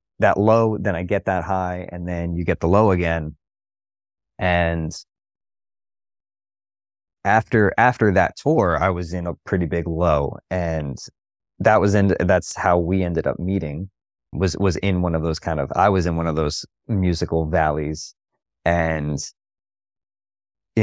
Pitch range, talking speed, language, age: 80-95 Hz, 155 wpm, English, 30-49